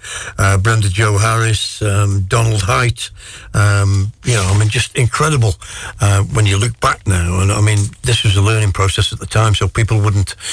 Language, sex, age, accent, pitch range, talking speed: English, male, 60-79, British, 100-115 Hz, 180 wpm